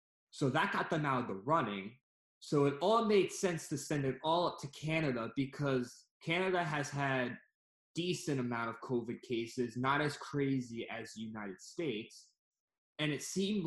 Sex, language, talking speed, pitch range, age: male, English, 175 wpm, 120-145 Hz, 20-39